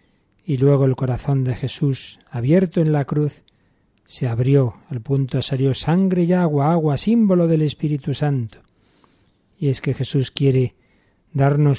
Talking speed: 150 wpm